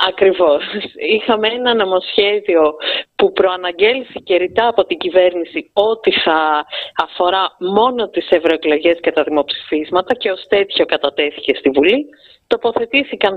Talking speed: 120 wpm